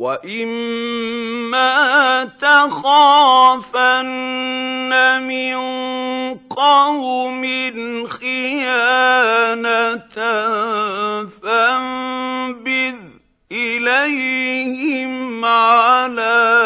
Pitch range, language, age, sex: 210-255 Hz, Arabic, 50-69, male